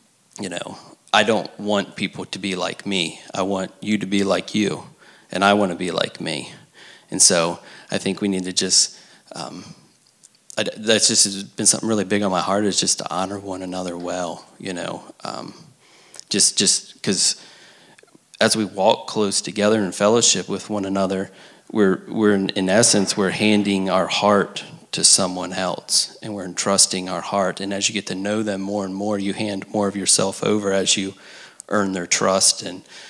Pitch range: 95-105 Hz